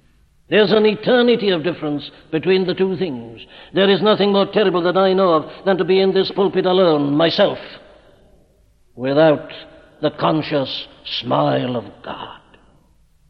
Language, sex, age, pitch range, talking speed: English, male, 60-79, 130-190 Hz, 145 wpm